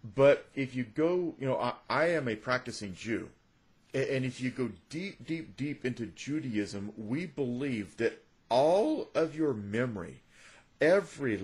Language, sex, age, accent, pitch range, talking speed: English, male, 40-59, American, 115-150 Hz, 150 wpm